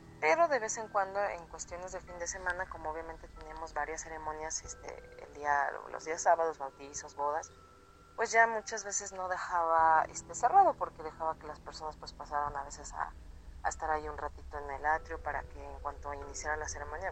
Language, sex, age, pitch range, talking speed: Spanish, female, 30-49, 145-190 Hz, 200 wpm